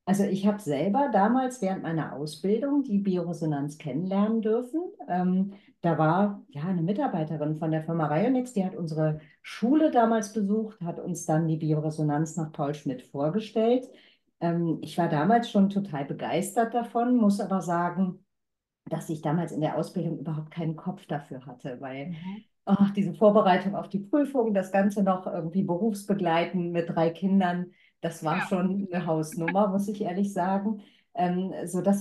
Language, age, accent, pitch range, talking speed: German, 40-59, German, 165-210 Hz, 160 wpm